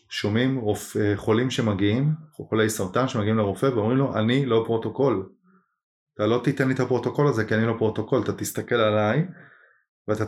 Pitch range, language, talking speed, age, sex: 110-145 Hz, Hebrew, 165 wpm, 30-49, male